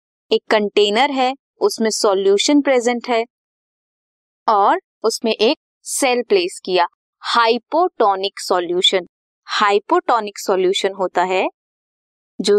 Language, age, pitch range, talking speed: Hindi, 20-39, 200-310 Hz, 95 wpm